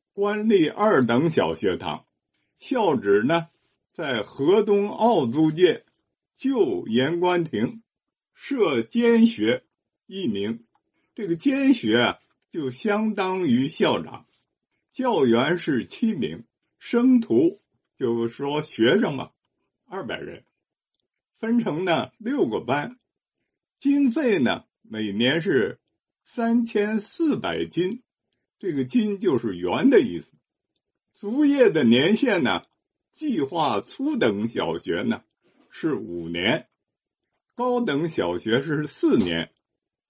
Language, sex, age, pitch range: Chinese, male, 50-69, 195-260 Hz